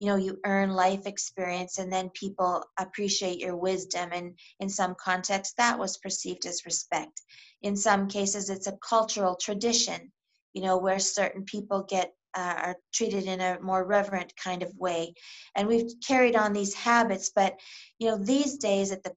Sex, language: female, English